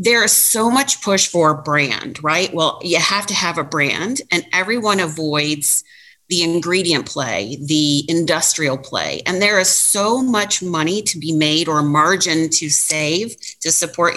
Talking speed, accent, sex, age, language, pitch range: 165 wpm, American, female, 40-59, English, 150-190 Hz